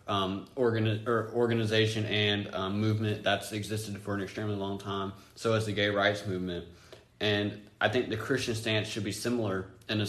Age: 20-39